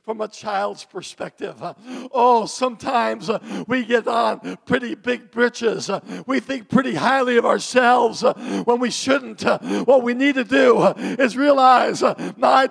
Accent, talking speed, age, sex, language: American, 135 wpm, 50-69, male, English